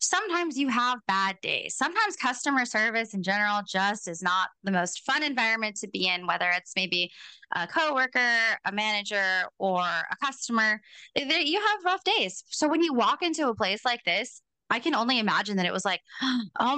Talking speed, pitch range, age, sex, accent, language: 185 wpm, 185-245 Hz, 20-39, female, American, English